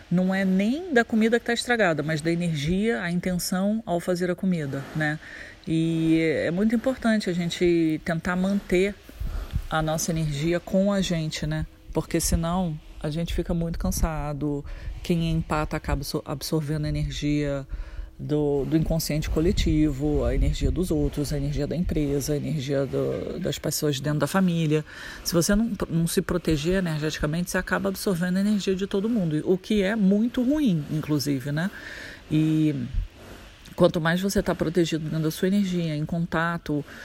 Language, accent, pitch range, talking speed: Portuguese, Brazilian, 155-190 Hz, 160 wpm